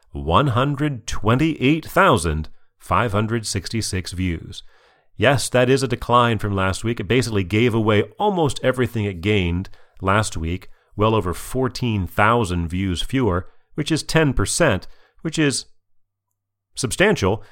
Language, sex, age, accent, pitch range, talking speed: English, male, 40-59, American, 90-115 Hz, 105 wpm